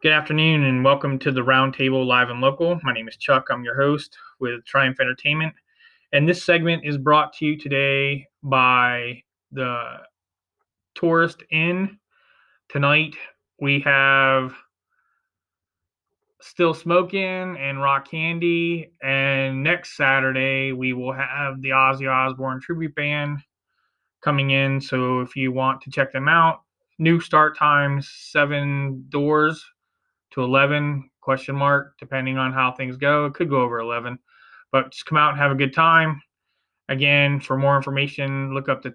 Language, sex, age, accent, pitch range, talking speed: English, male, 20-39, American, 130-150 Hz, 150 wpm